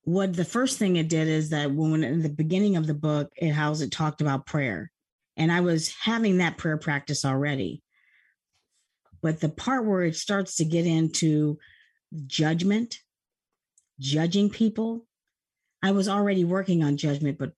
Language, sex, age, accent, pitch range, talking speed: English, female, 40-59, American, 150-185 Hz, 165 wpm